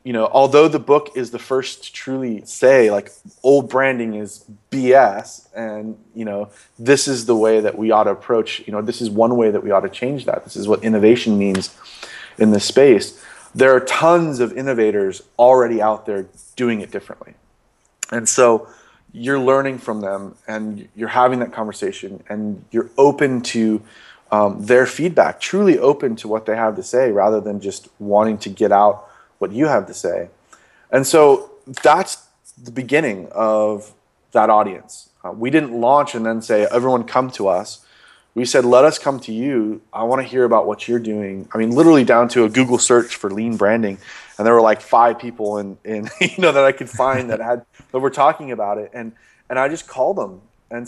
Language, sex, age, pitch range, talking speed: English, male, 30-49, 110-130 Hz, 200 wpm